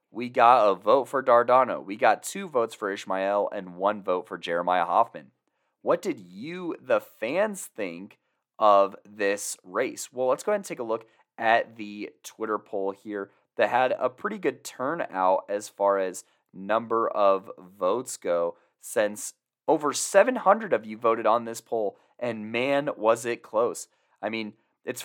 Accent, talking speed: American, 170 wpm